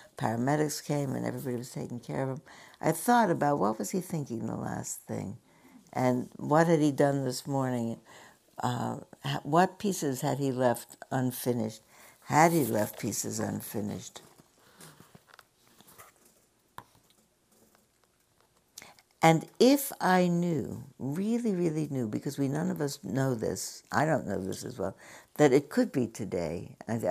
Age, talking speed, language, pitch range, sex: 60-79, 140 wpm, English, 115-160 Hz, female